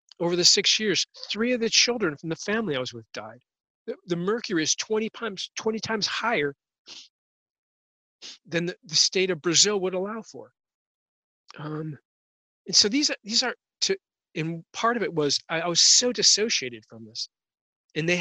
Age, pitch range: 40-59, 130-180 Hz